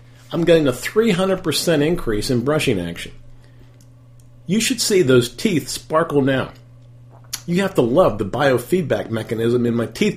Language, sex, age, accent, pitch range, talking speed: English, male, 50-69, American, 120-145 Hz, 150 wpm